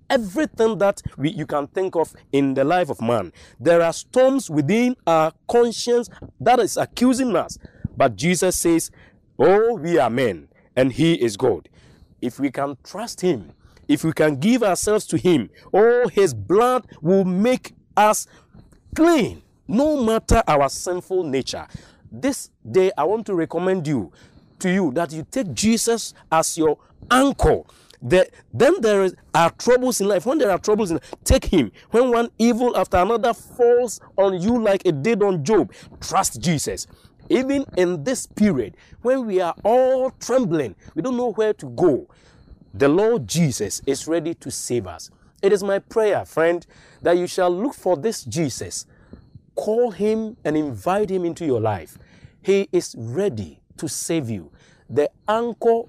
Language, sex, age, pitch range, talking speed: English, male, 50-69, 160-230 Hz, 165 wpm